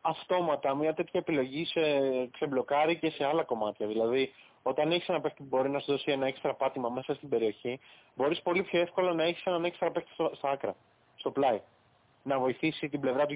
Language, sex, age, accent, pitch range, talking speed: Greek, male, 20-39, native, 130-160 Hz, 200 wpm